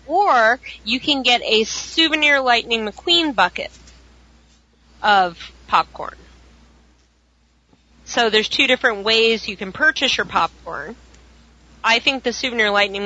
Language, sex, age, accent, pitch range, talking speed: English, female, 30-49, American, 170-245 Hz, 120 wpm